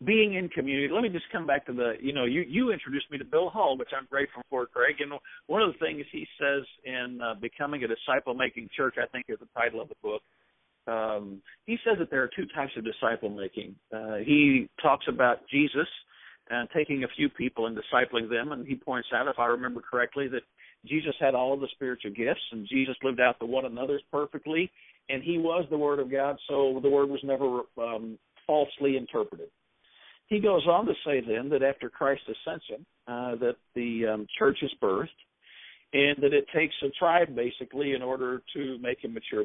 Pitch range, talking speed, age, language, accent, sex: 120-150 Hz, 205 wpm, 50-69, English, American, male